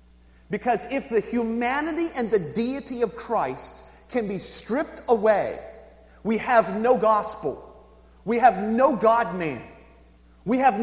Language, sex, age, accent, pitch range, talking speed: English, male, 40-59, American, 205-300 Hz, 125 wpm